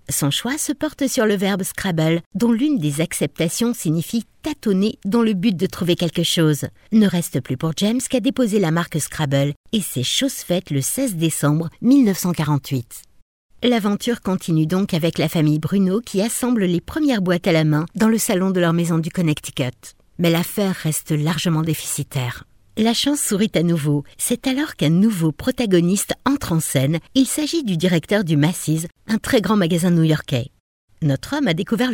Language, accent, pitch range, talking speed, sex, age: French, French, 160-225 Hz, 185 wpm, female, 60-79